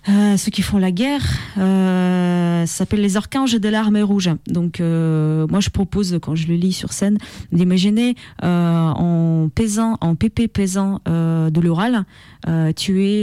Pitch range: 160-210 Hz